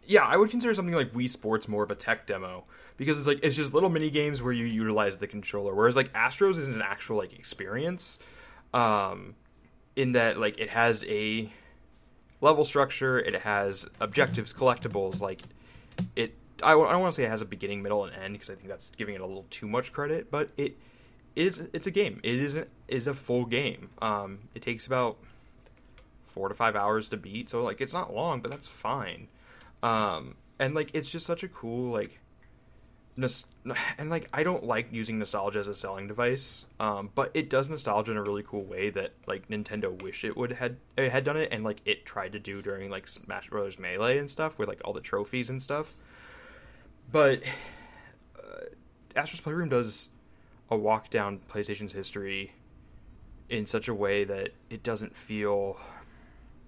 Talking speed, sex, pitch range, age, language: 195 wpm, male, 105-140 Hz, 20-39, English